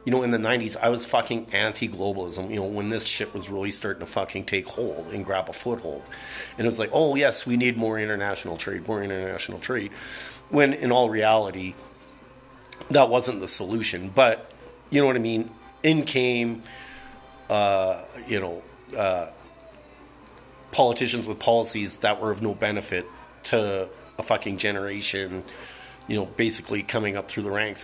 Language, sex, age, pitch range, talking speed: English, male, 40-59, 100-125 Hz, 170 wpm